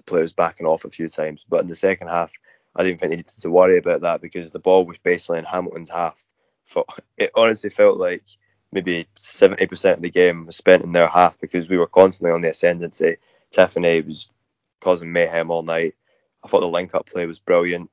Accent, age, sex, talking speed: British, 20-39, male, 210 wpm